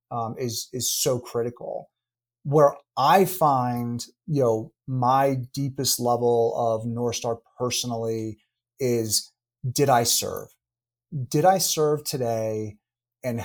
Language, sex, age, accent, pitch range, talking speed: English, male, 30-49, American, 115-140 Hz, 110 wpm